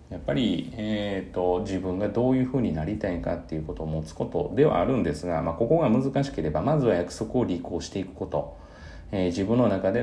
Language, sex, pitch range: Japanese, male, 80-105 Hz